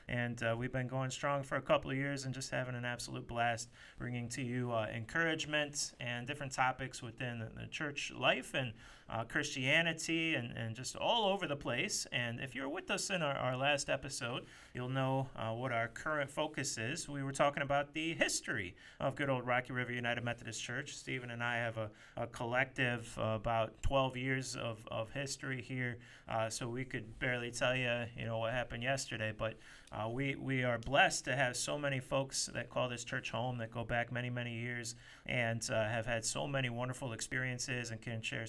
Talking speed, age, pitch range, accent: 205 wpm, 30-49, 115-135 Hz, American